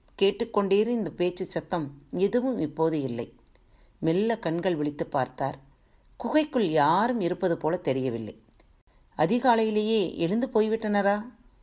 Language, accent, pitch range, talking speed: Tamil, native, 155-225 Hz, 100 wpm